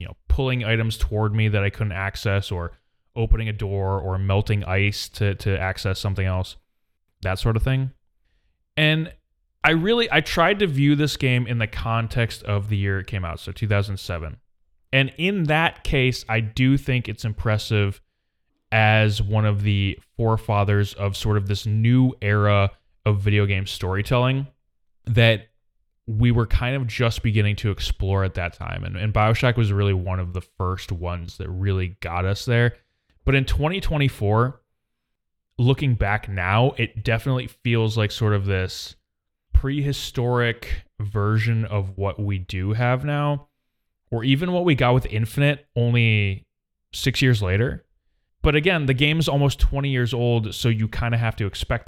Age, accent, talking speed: 20-39, American, 170 wpm